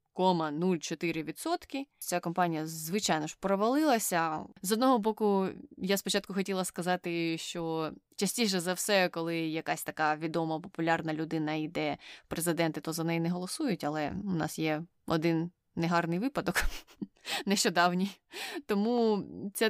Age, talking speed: 20-39, 130 wpm